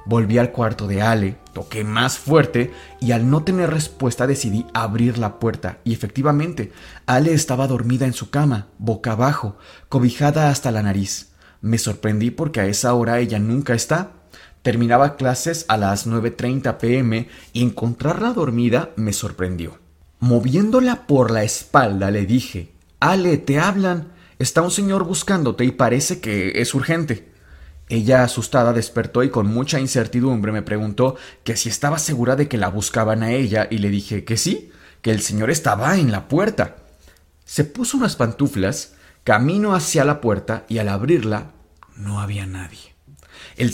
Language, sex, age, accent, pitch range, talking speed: Spanish, male, 30-49, Mexican, 105-135 Hz, 160 wpm